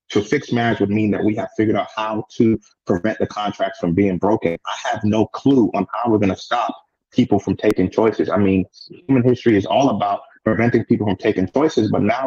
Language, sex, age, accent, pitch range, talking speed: English, male, 30-49, American, 110-135 Hz, 220 wpm